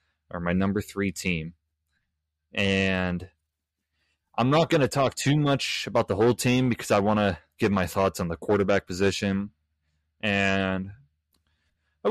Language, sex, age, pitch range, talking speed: English, male, 20-39, 85-100 Hz, 150 wpm